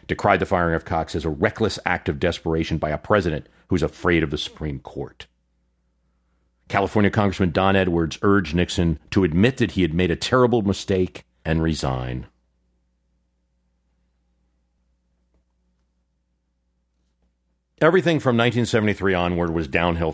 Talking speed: 130 wpm